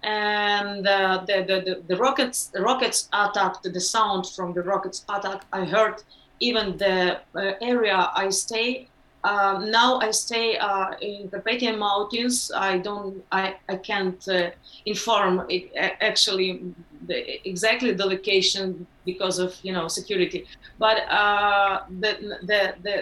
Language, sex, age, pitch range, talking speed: German, female, 30-49, 185-210 Hz, 135 wpm